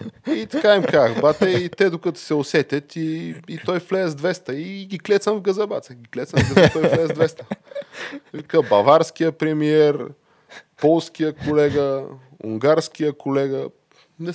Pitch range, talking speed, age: 100-145 Hz, 150 wpm, 20-39